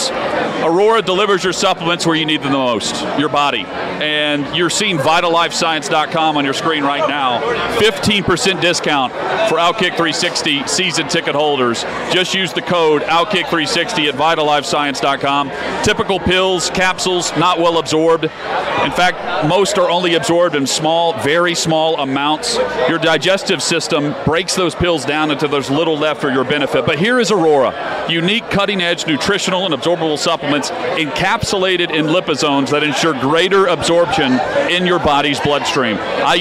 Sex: male